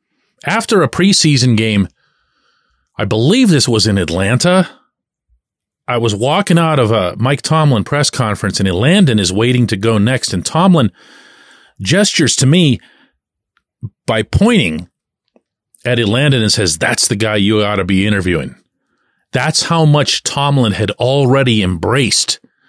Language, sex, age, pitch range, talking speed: English, male, 40-59, 105-145 Hz, 140 wpm